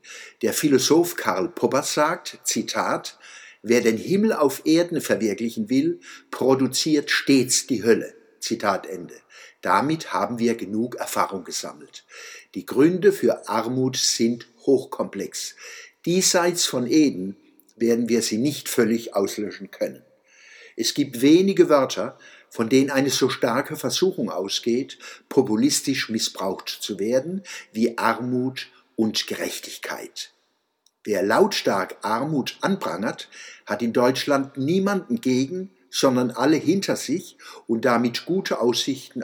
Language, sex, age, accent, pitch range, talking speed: German, male, 60-79, German, 120-190 Hz, 120 wpm